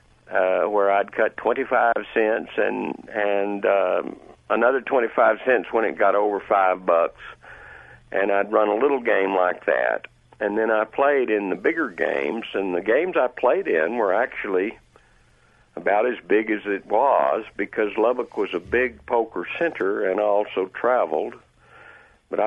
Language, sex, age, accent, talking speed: English, male, 60-79, American, 160 wpm